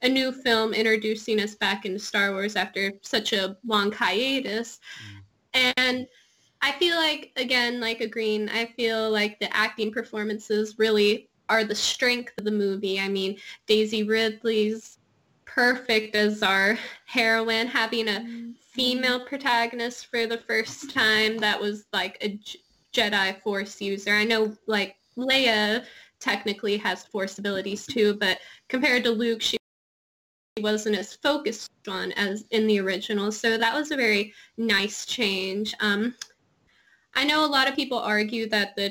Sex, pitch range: female, 205-240 Hz